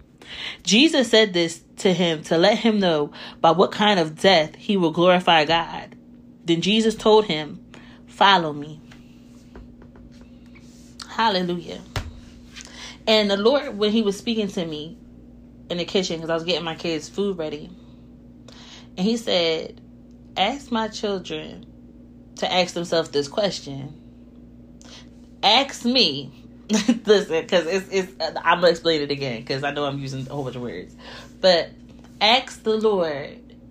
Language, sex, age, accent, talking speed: English, female, 30-49, American, 145 wpm